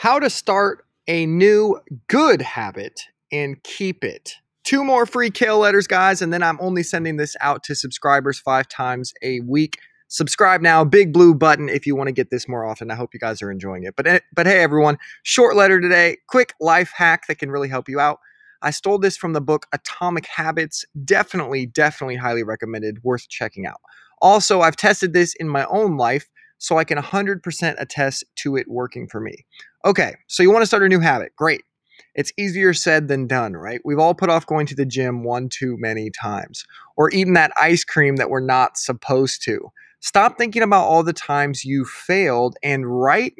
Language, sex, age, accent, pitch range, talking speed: English, male, 20-39, American, 135-190 Hz, 200 wpm